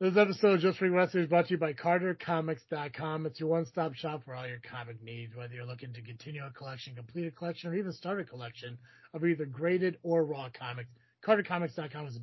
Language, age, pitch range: English, 30-49, 125-185 Hz